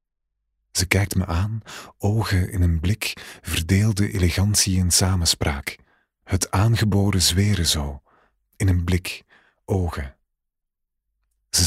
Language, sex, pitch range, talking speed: Dutch, male, 85-105 Hz, 110 wpm